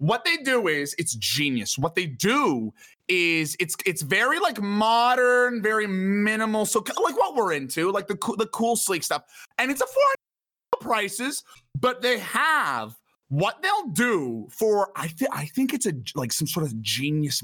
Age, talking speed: 30-49, 180 wpm